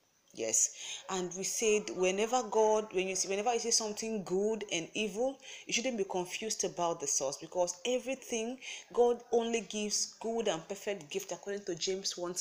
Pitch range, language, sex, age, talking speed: 185-230 Hz, English, female, 30-49, 175 wpm